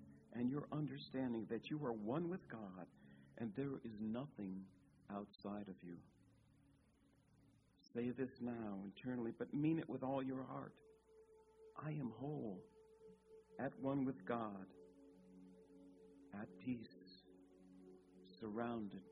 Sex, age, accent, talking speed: male, 60-79, American, 115 wpm